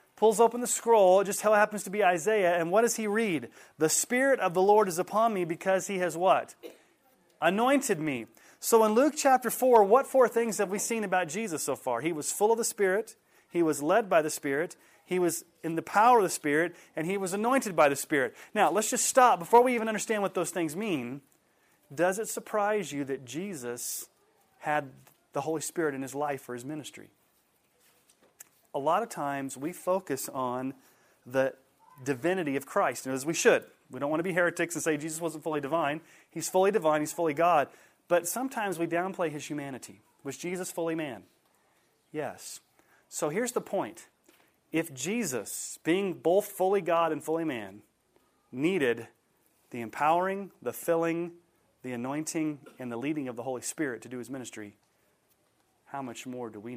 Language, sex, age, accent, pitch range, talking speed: English, male, 30-49, American, 140-205 Hz, 190 wpm